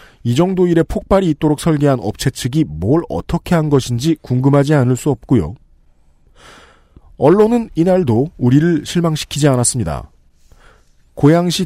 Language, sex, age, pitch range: Korean, male, 40-59, 120-175 Hz